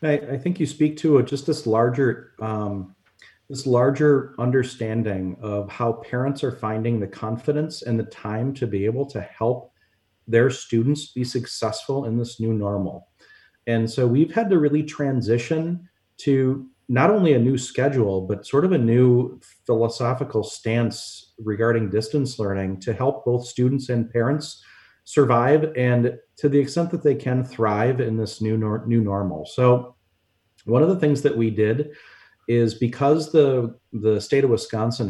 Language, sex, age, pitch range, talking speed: English, male, 40-59, 110-135 Hz, 160 wpm